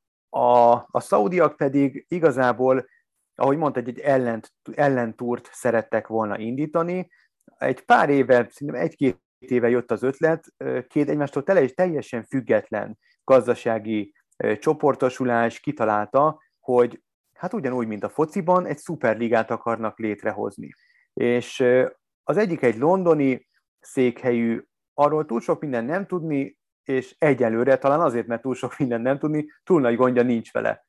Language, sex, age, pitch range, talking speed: Hungarian, male, 30-49, 115-150 Hz, 130 wpm